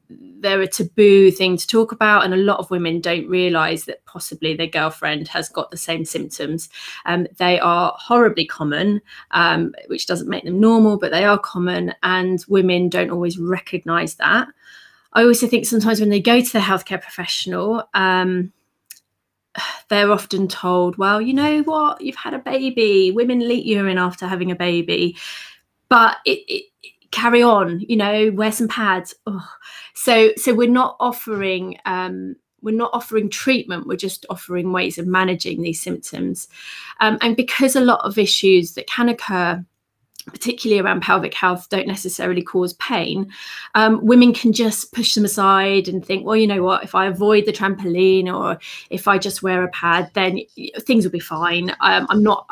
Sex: female